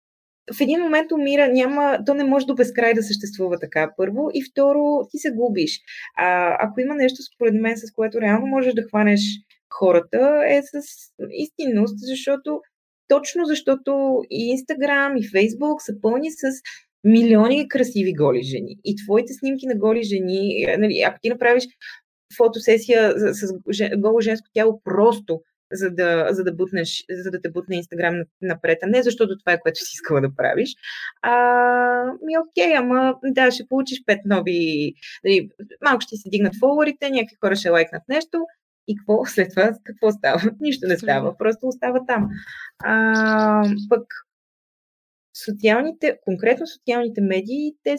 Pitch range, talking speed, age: 195-260 Hz, 155 wpm, 20-39